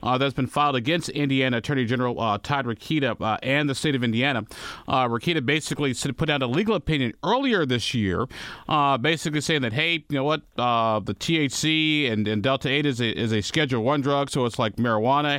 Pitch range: 120-155 Hz